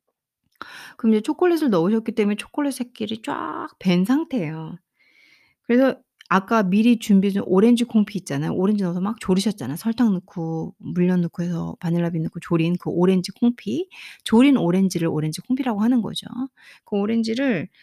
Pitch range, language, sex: 170-245 Hz, Korean, female